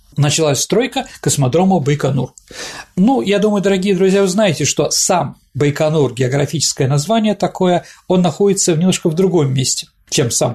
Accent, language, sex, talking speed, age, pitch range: native, Russian, male, 150 wpm, 40-59, 140-195 Hz